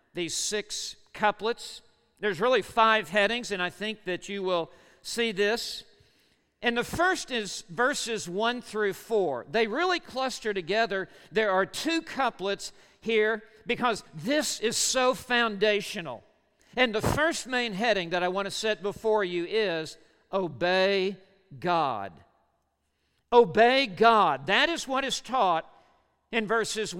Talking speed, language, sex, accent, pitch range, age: 135 wpm, English, male, American, 195-255 Hz, 50-69